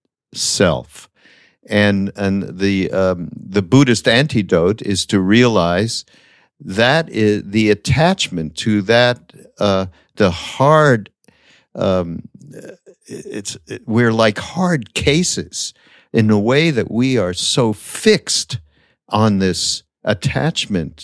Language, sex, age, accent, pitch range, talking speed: English, male, 50-69, American, 95-120 Hz, 110 wpm